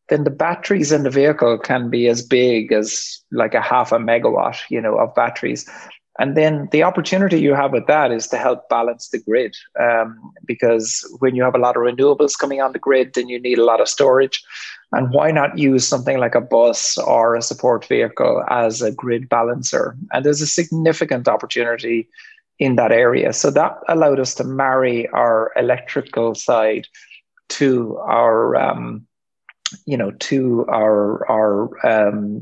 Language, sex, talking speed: English, male, 180 wpm